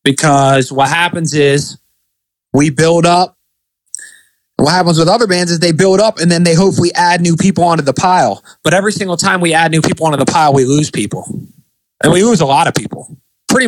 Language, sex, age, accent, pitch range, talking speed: English, male, 30-49, American, 135-170 Hz, 210 wpm